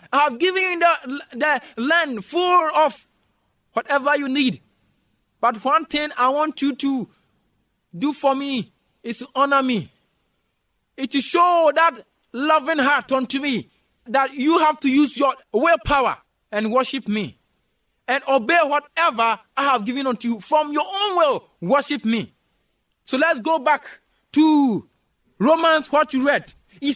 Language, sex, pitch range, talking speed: English, male, 250-315 Hz, 150 wpm